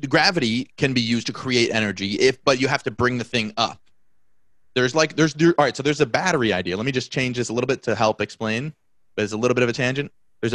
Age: 30-49